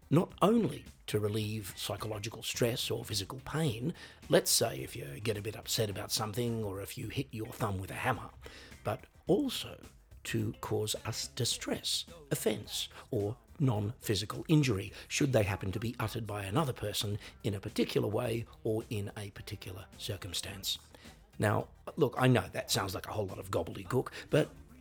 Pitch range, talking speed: 100-125 Hz, 165 wpm